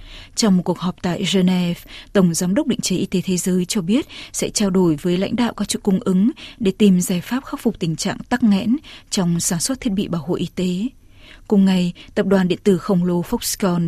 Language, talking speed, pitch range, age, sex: Vietnamese, 240 wpm, 180-210 Hz, 20-39, female